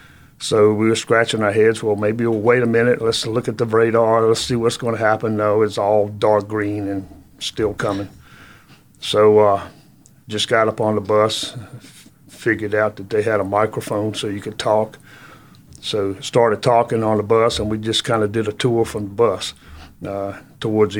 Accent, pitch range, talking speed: American, 105-115 Hz, 195 wpm